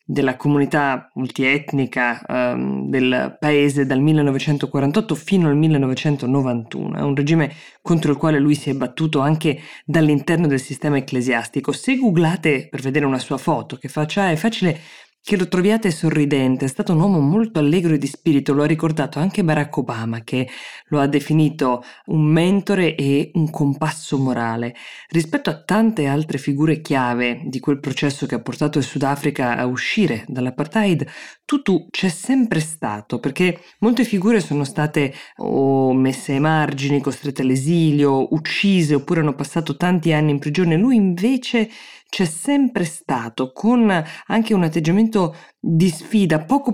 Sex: female